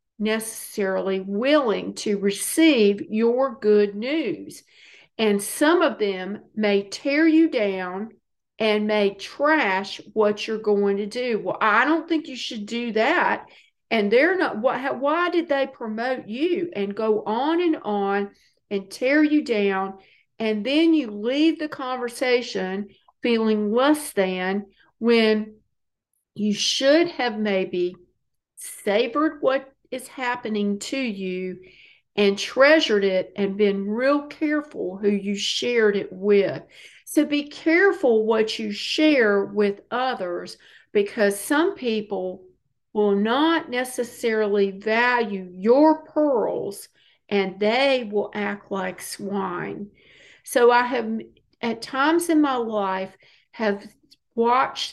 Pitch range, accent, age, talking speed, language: 200-270 Hz, American, 50-69, 125 wpm, English